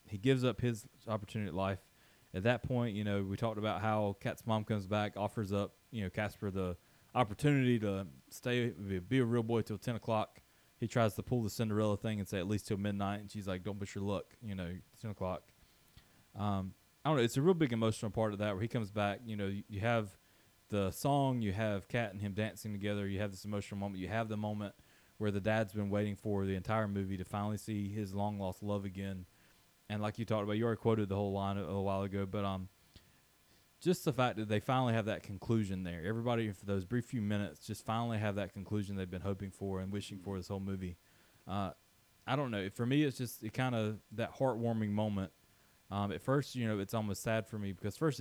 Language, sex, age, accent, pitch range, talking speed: English, male, 20-39, American, 100-115 Hz, 235 wpm